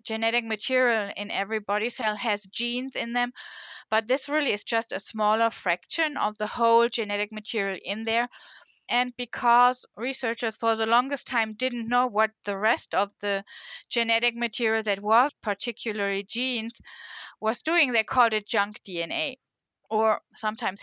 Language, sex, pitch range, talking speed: English, female, 210-245 Hz, 155 wpm